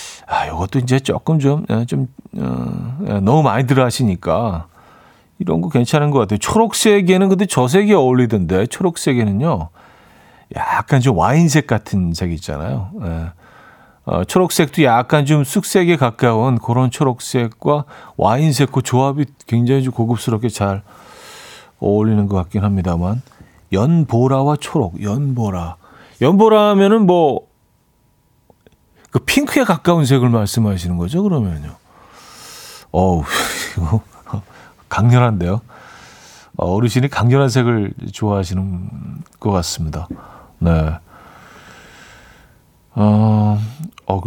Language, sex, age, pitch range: Korean, male, 40-59, 100-150 Hz